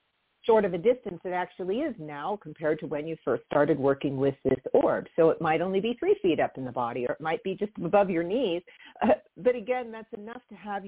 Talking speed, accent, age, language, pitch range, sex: 245 wpm, American, 50-69, English, 165-220 Hz, female